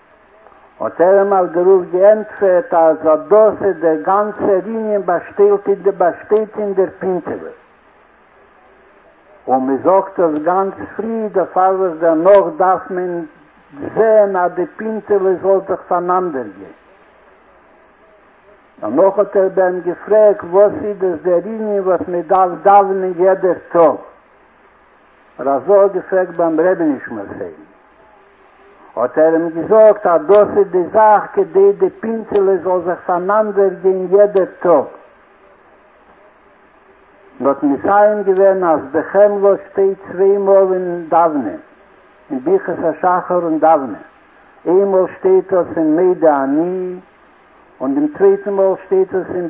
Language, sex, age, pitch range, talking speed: Hebrew, male, 60-79, 175-205 Hz, 90 wpm